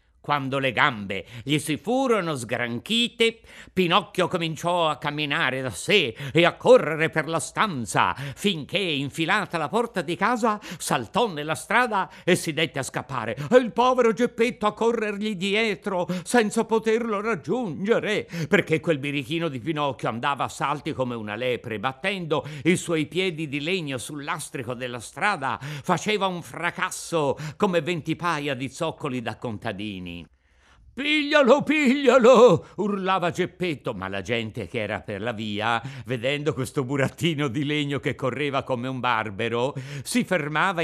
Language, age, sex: Italian, 50-69, male